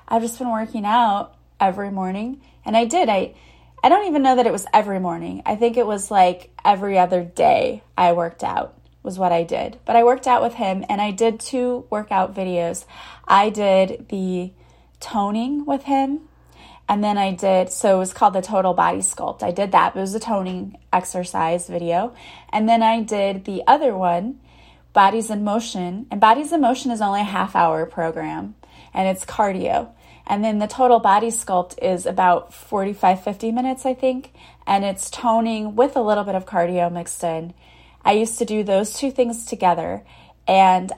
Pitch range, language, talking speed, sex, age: 180-230 Hz, English, 190 wpm, female, 30-49